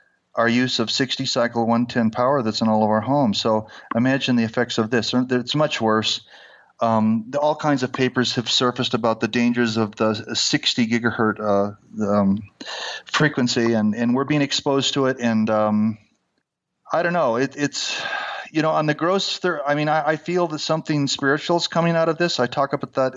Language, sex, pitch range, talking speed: English, male, 120-150 Hz, 200 wpm